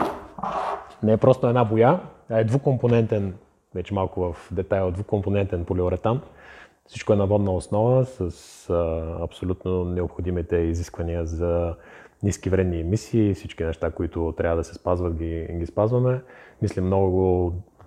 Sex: male